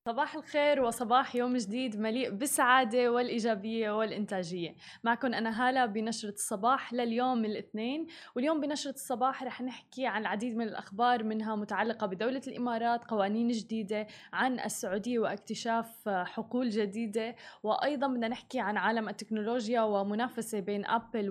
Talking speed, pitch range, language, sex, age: 125 wpm, 220-265 Hz, Arabic, female, 20-39